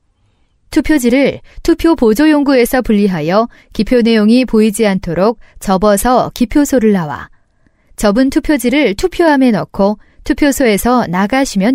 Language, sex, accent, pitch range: Korean, female, native, 175-275 Hz